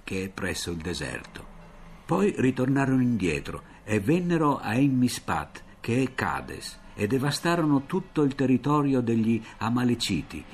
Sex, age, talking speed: male, 50-69, 125 wpm